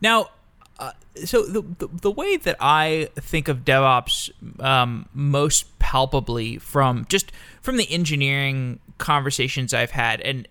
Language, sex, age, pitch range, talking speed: English, male, 20-39, 120-140 Hz, 135 wpm